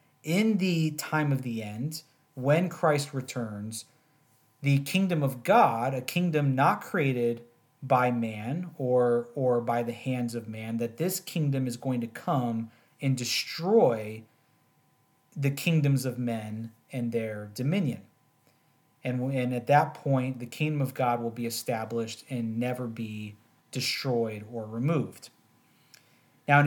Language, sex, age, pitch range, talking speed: English, male, 40-59, 120-150 Hz, 140 wpm